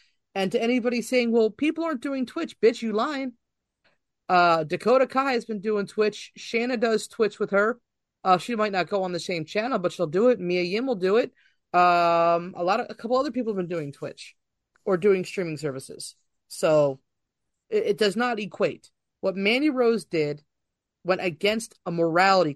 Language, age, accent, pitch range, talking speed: English, 30-49, American, 165-230 Hz, 190 wpm